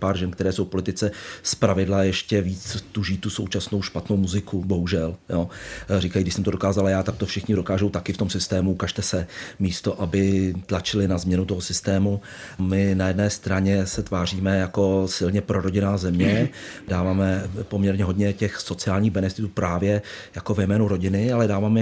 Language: Czech